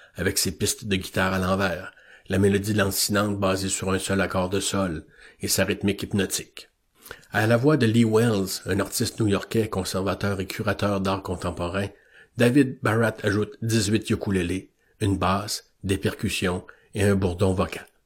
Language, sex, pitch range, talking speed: French, male, 95-115 Hz, 160 wpm